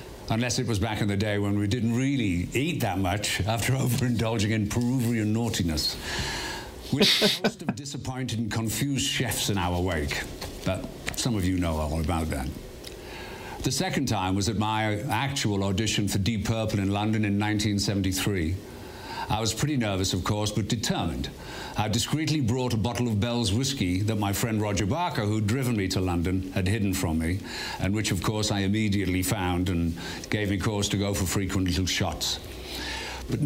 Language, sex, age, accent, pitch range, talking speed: English, male, 60-79, British, 95-120 Hz, 185 wpm